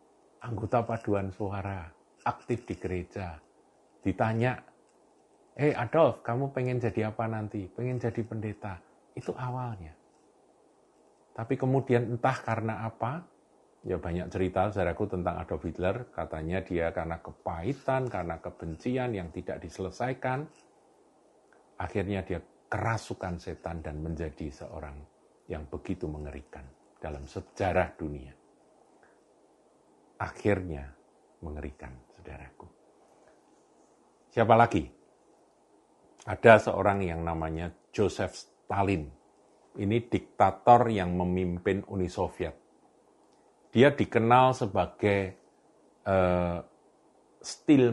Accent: native